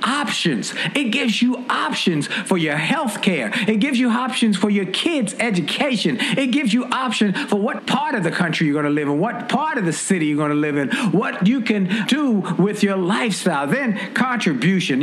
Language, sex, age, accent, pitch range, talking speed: English, male, 50-69, American, 170-235 Hz, 205 wpm